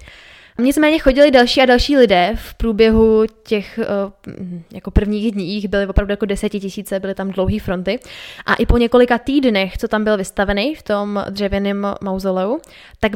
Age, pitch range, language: 20-39, 195-225 Hz, Czech